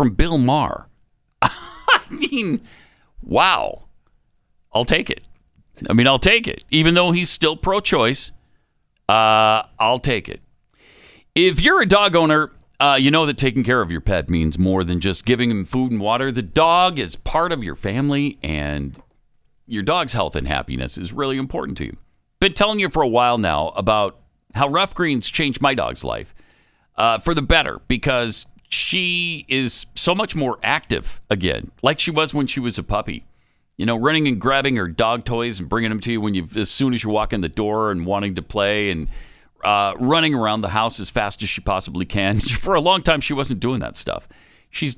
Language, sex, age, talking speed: English, male, 50-69, 195 wpm